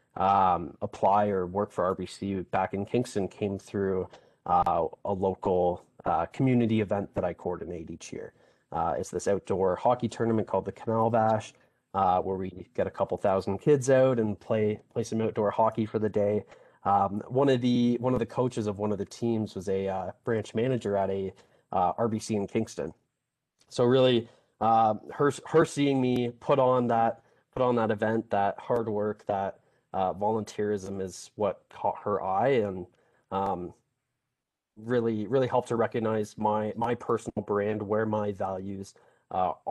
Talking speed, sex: 170 wpm, male